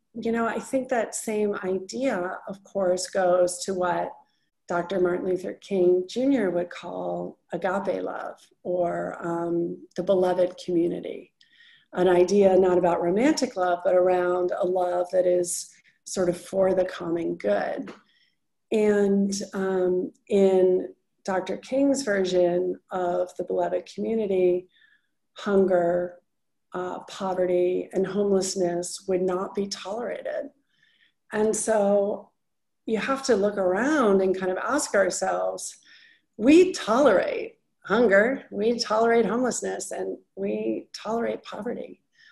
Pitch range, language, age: 180-220 Hz, English, 40-59